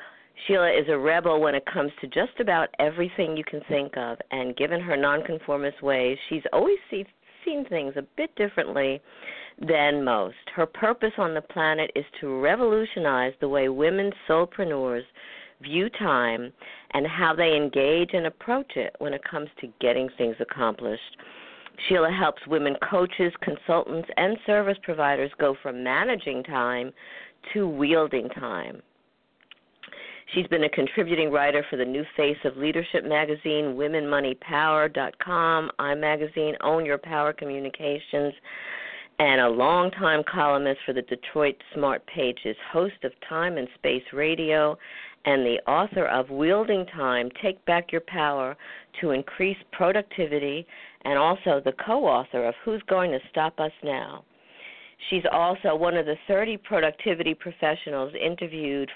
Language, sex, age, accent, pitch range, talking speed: English, female, 50-69, American, 140-175 Hz, 140 wpm